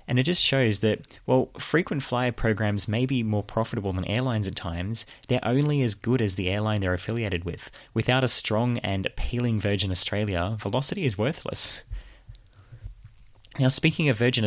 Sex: male